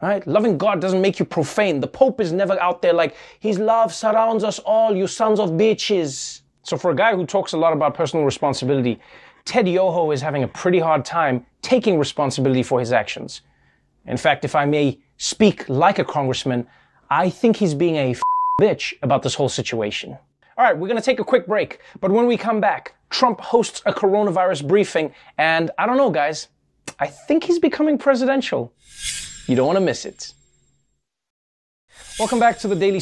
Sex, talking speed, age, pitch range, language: male, 190 wpm, 30-49, 145-215 Hz, English